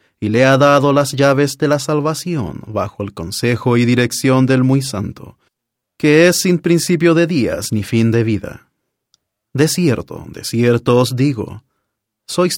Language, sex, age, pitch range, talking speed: English, male, 30-49, 115-150 Hz, 160 wpm